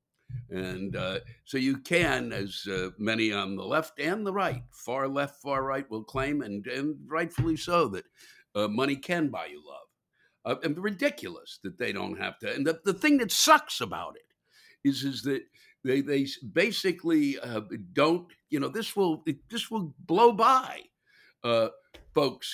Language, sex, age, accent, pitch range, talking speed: English, male, 60-79, American, 110-180 Hz, 175 wpm